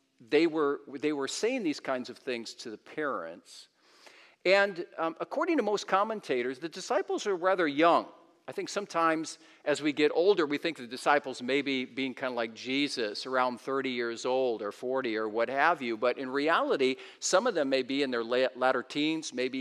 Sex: male